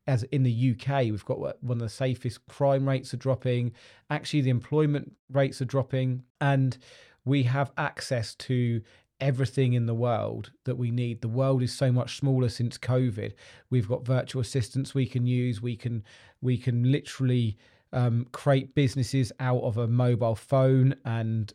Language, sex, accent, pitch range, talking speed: English, male, British, 115-130 Hz, 170 wpm